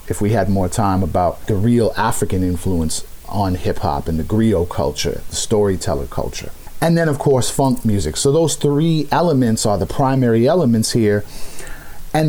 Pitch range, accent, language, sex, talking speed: 100-135 Hz, American, English, male, 175 wpm